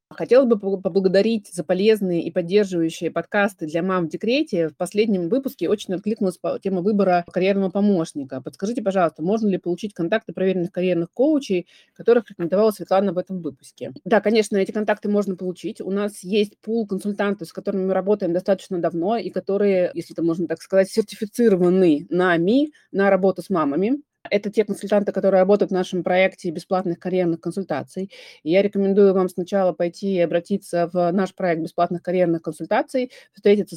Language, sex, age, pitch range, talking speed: Russian, female, 30-49, 175-205 Hz, 165 wpm